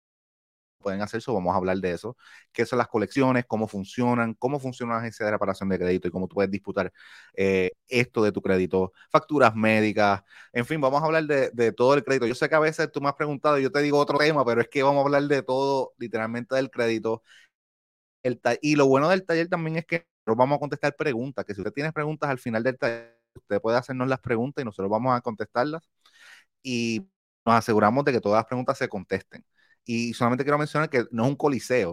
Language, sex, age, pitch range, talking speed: Spanish, male, 30-49, 105-135 Hz, 225 wpm